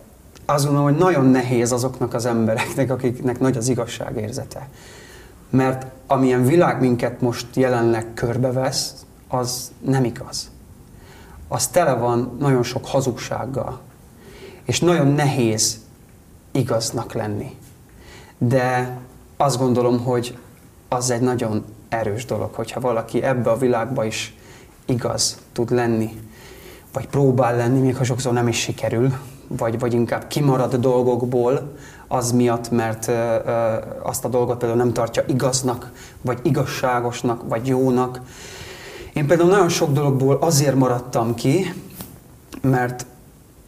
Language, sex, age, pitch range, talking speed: Hungarian, male, 30-49, 120-130 Hz, 120 wpm